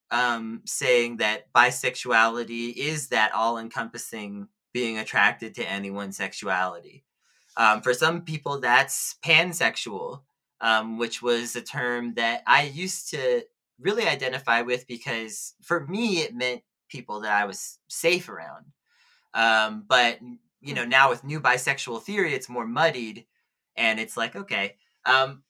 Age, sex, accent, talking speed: 30-49, male, American, 135 wpm